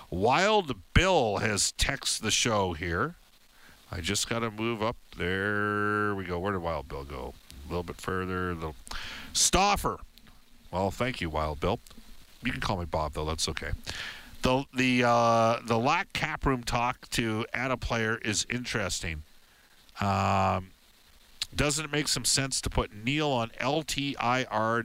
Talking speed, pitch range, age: 155 wpm, 90-125 Hz, 50-69